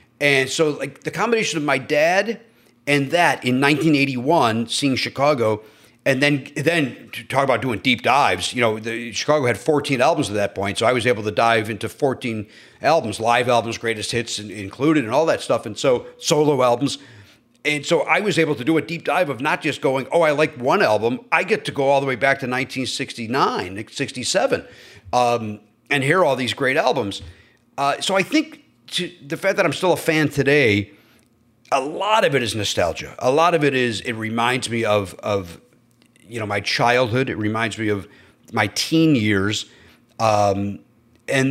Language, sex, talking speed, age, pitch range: English, male, 190 wpm, 40-59, 110-140 Hz